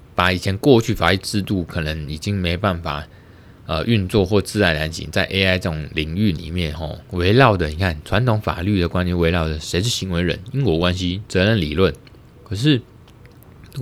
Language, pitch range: Chinese, 80-105 Hz